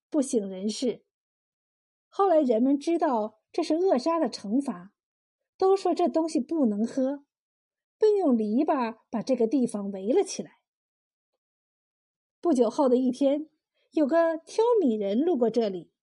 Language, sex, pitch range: Chinese, female, 235-345 Hz